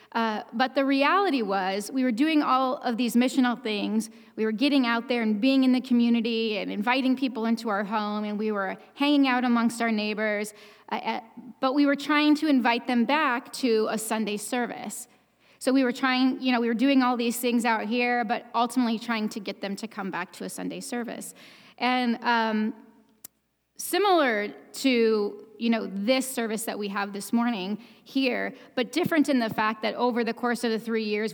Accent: American